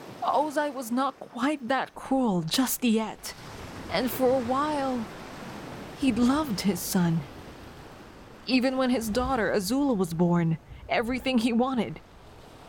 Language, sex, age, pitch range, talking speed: English, female, 20-39, 190-250 Hz, 125 wpm